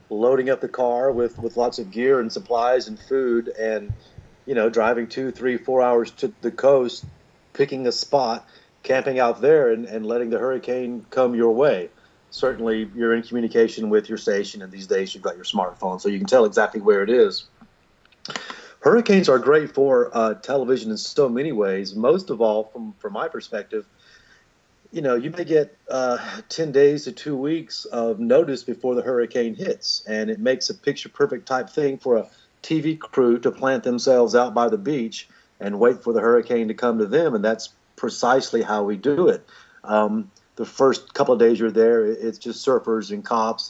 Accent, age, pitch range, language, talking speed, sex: American, 40-59, 110-135 Hz, English, 195 wpm, male